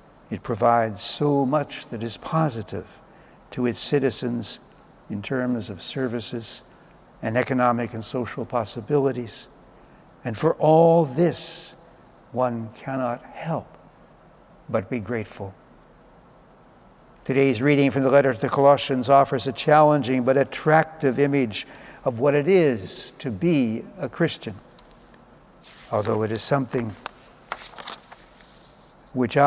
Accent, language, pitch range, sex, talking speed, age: American, English, 120-150 Hz, male, 115 wpm, 60-79